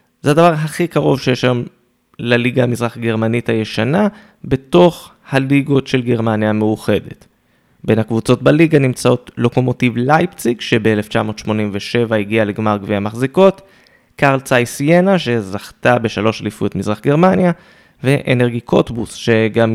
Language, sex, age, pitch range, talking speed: Hebrew, male, 20-39, 115-140 Hz, 110 wpm